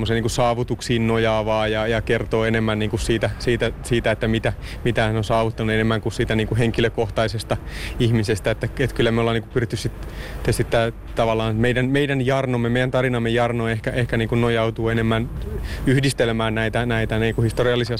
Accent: native